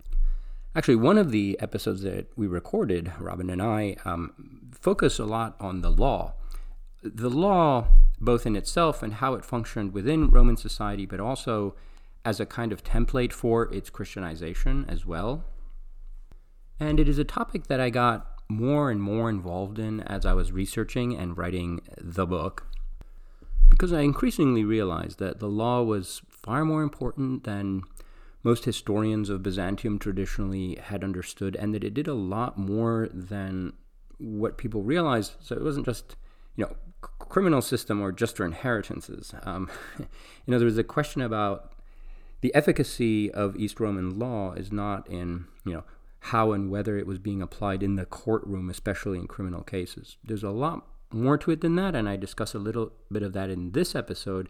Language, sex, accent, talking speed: English, male, American, 175 wpm